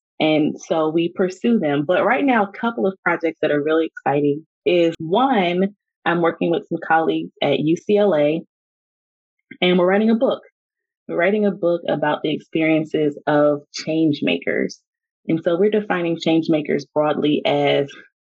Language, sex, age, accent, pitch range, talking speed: English, female, 20-39, American, 150-180 Hz, 160 wpm